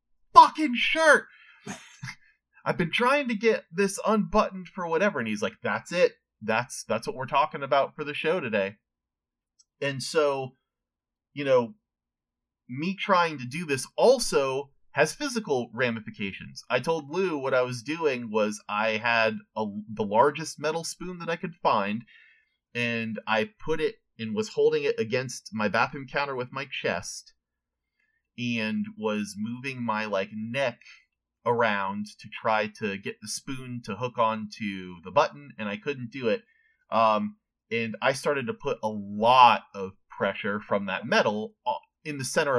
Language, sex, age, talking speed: English, male, 30-49, 155 wpm